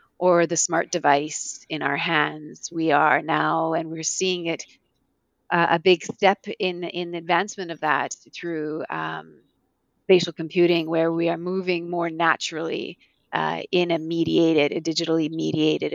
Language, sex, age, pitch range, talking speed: English, female, 30-49, 165-195 Hz, 150 wpm